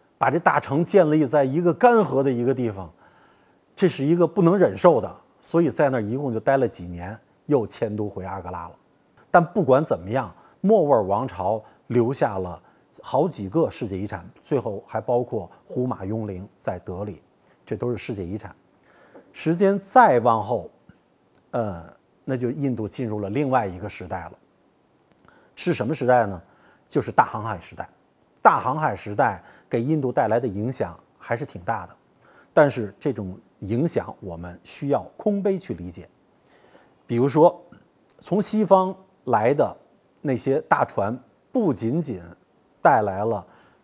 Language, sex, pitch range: Chinese, male, 100-150 Hz